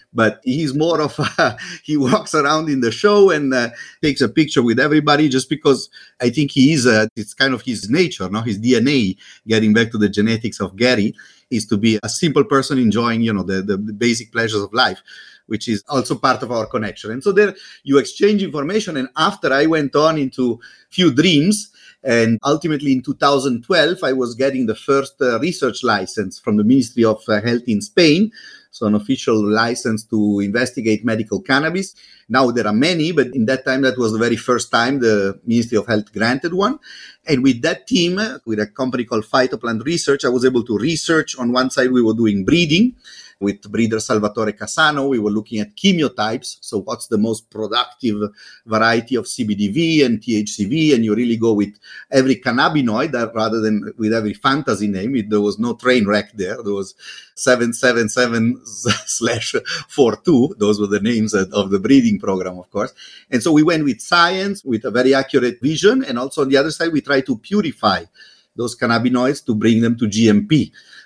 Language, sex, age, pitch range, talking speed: English, male, 30-49, 110-150 Hz, 190 wpm